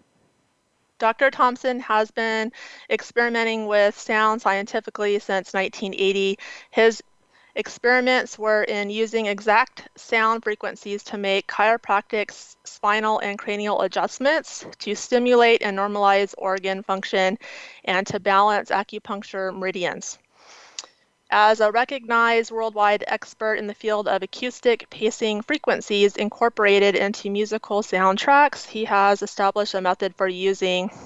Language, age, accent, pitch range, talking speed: English, 30-49, American, 195-225 Hz, 115 wpm